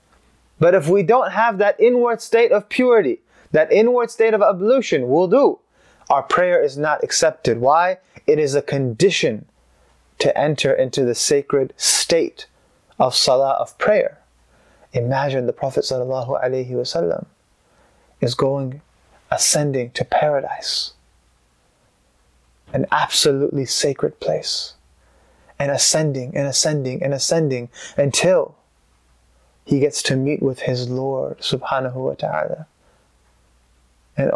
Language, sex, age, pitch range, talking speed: English, male, 20-39, 120-165 Hz, 120 wpm